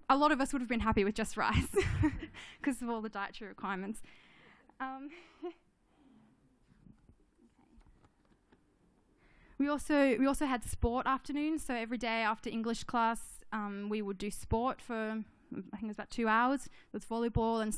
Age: 10-29